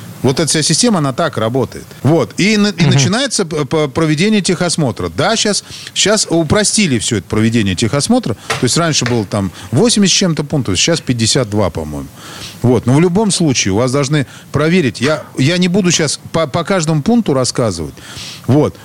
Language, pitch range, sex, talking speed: Russian, 125-175 Hz, male, 170 wpm